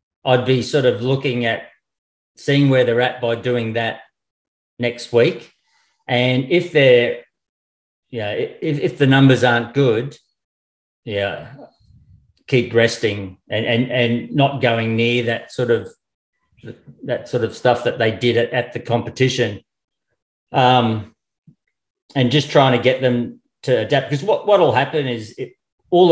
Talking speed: 150 wpm